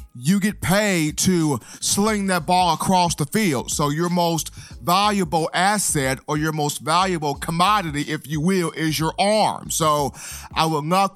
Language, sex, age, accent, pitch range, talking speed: English, male, 30-49, American, 150-195 Hz, 160 wpm